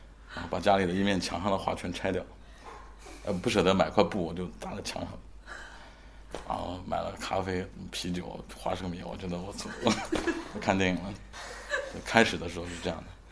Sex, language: male, Chinese